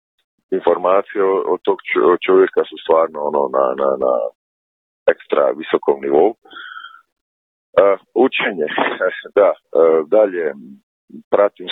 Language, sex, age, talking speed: Croatian, male, 50-69, 100 wpm